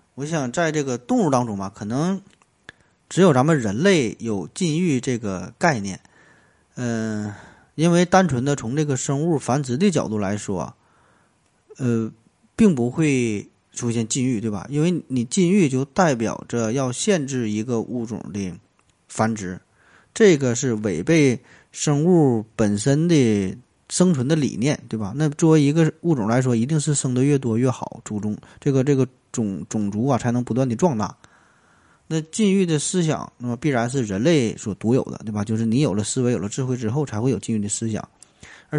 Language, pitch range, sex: Chinese, 110-145 Hz, male